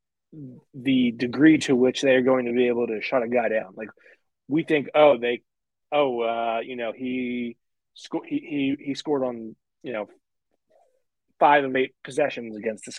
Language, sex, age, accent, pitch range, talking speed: English, male, 20-39, American, 120-150 Hz, 180 wpm